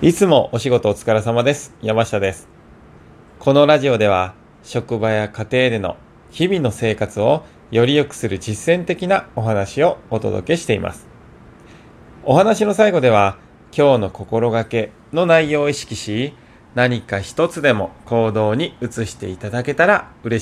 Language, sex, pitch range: Japanese, male, 110-150 Hz